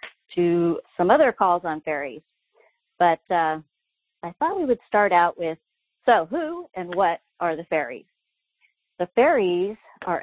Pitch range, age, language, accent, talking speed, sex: 160-200 Hz, 40-59, English, American, 145 wpm, female